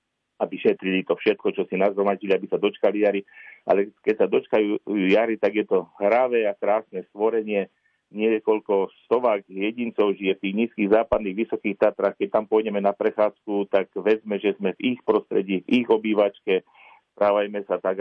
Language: Slovak